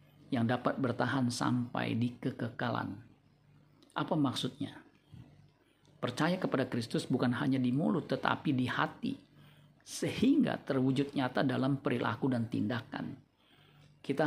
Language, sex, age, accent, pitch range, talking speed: Indonesian, male, 50-69, native, 125-140 Hz, 110 wpm